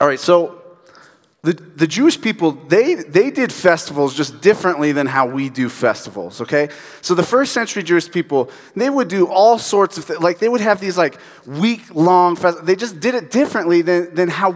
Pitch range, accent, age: 160-210 Hz, American, 30-49